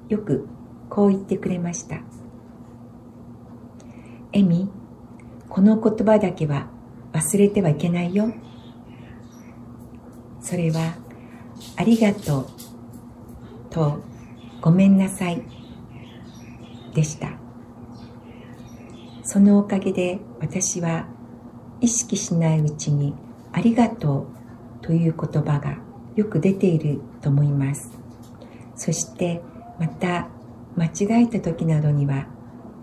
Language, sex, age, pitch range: Japanese, female, 60-79, 120-180 Hz